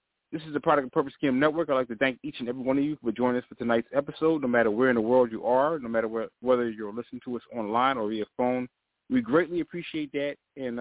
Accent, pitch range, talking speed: American, 120-150 Hz, 270 wpm